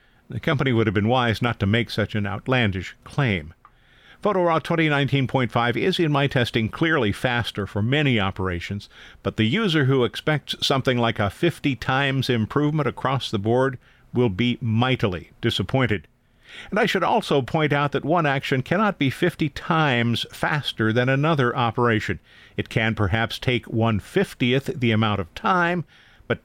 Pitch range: 110-140 Hz